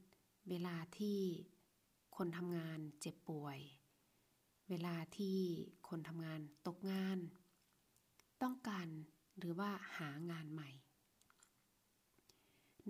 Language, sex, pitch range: Thai, female, 160-200 Hz